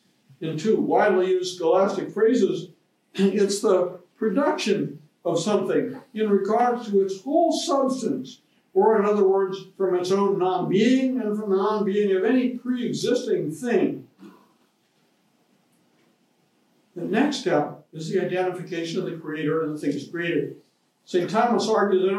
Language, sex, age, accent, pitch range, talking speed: English, male, 60-79, American, 180-235 Hz, 135 wpm